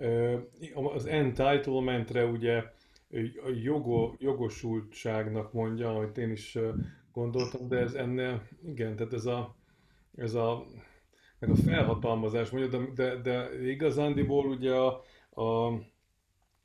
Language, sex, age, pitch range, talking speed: Hungarian, male, 30-49, 115-130 Hz, 110 wpm